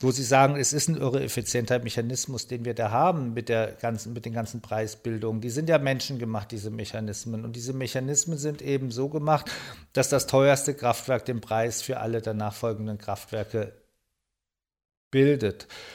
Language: German